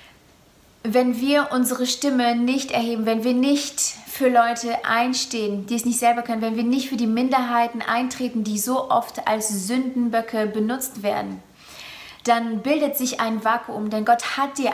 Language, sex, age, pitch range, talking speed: German, female, 30-49, 215-245 Hz, 165 wpm